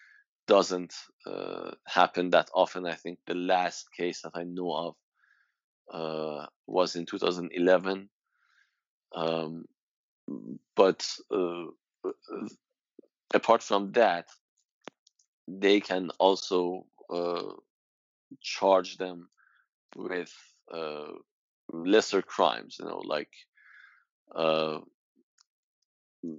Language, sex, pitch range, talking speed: English, male, 80-95 Hz, 85 wpm